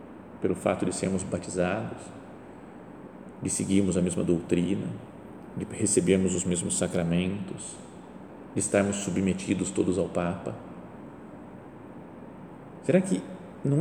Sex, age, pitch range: male, 40-59, 110-165 Hz